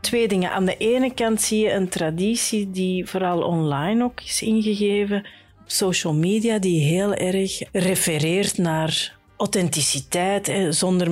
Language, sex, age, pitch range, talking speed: Dutch, female, 40-59, 165-205 Hz, 135 wpm